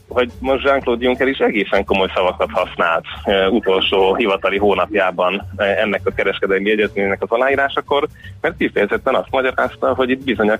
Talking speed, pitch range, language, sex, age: 160 wpm, 95-110 Hz, Hungarian, male, 30-49